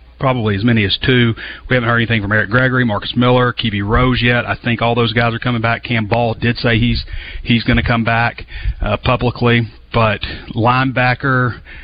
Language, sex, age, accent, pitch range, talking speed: English, male, 40-59, American, 105-125 Hz, 200 wpm